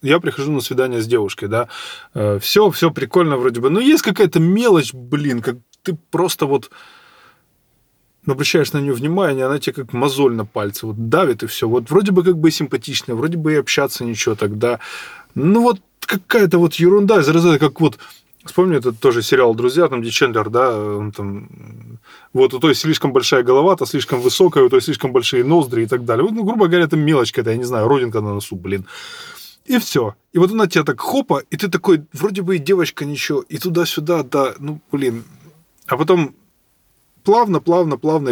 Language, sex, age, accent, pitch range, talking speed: Russian, male, 20-39, native, 130-200 Hz, 195 wpm